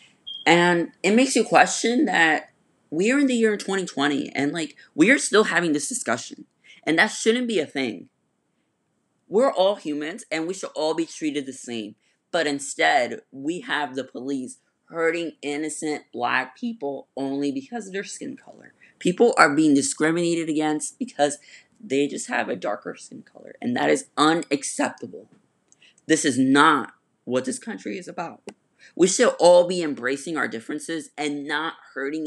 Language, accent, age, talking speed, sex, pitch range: English, American, 20-39, 165 wpm, female, 140-195 Hz